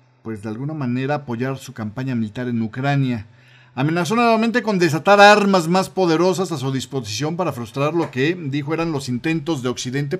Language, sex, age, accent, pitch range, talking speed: Spanish, male, 40-59, Mexican, 125-185 Hz, 175 wpm